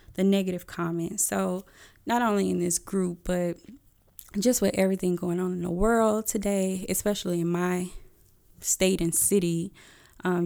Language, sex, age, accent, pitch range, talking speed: English, female, 20-39, American, 170-190 Hz, 150 wpm